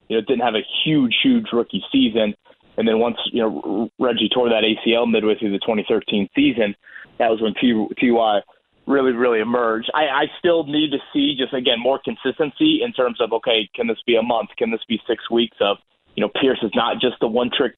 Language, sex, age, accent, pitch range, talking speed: English, male, 30-49, American, 120-165 Hz, 215 wpm